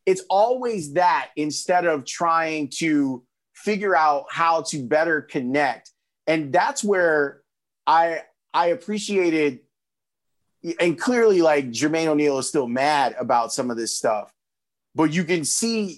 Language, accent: English, American